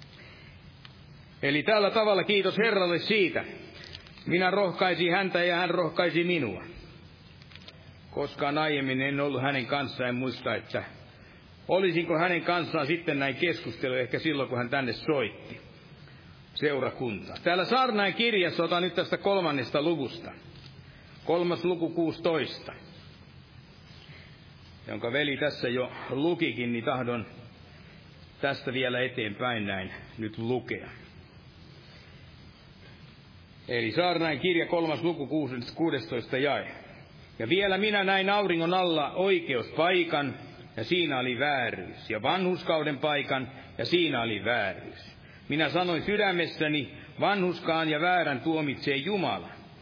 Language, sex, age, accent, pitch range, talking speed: Finnish, male, 60-79, native, 130-180 Hz, 110 wpm